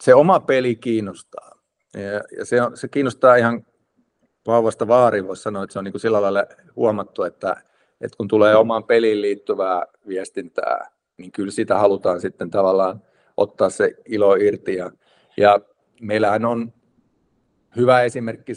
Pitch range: 105-145 Hz